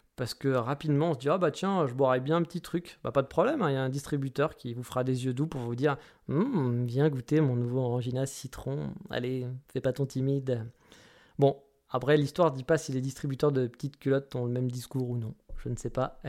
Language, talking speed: French, 265 wpm